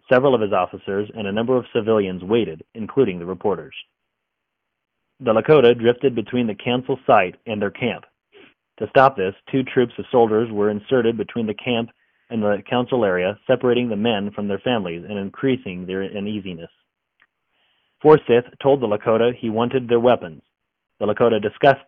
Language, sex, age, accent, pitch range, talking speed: English, male, 30-49, American, 105-125 Hz, 165 wpm